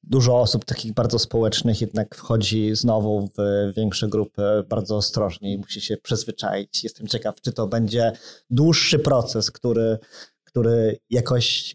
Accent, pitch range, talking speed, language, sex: native, 115-145 Hz, 140 wpm, Polish, male